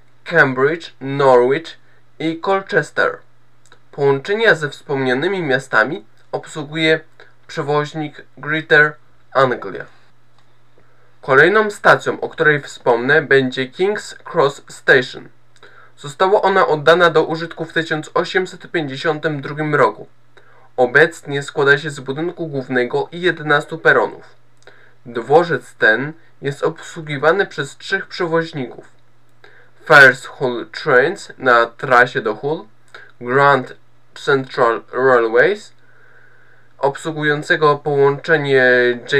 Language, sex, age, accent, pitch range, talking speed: Polish, male, 20-39, native, 130-165 Hz, 85 wpm